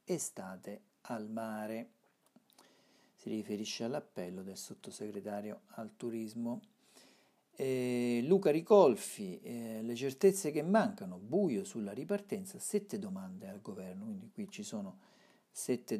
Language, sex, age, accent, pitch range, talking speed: Italian, male, 50-69, native, 120-195 Hz, 115 wpm